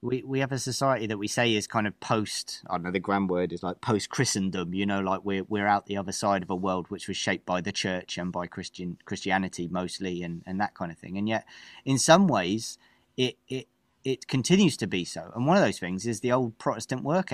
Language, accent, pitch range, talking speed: English, British, 100-130 Hz, 255 wpm